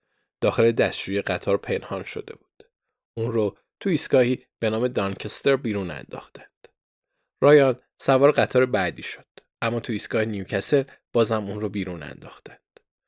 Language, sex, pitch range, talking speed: Persian, male, 100-130 Hz, 135 wpm